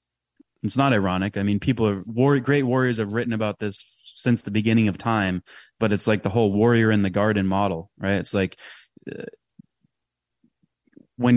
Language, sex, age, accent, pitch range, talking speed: English, male, 20-39, American, 100-120 Hz, 185 wpm